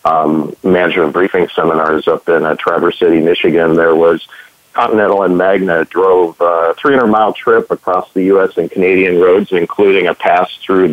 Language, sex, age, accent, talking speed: English, male, 50-69, American, 160 wpm